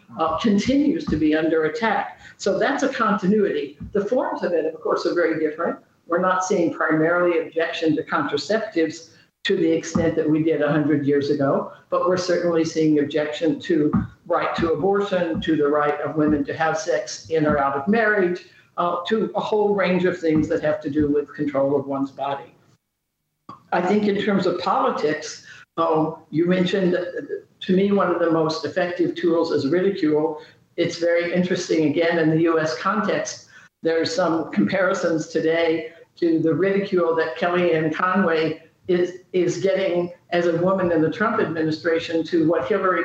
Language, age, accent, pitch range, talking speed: English, 60-79, American, 160-185 Hz, 170 wpm